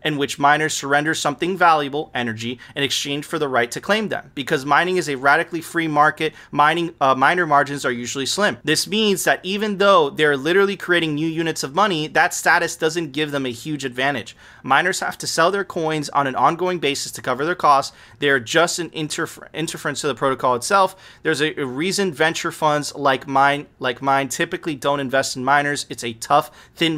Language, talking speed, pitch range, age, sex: English, 205 wpm, 140-170 Hz, 30-49, male